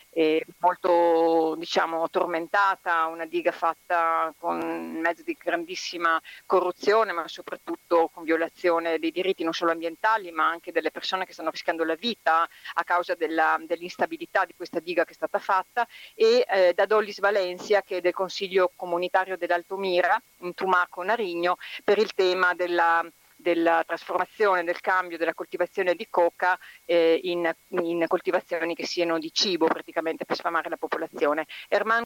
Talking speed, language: 150 wpm, Italian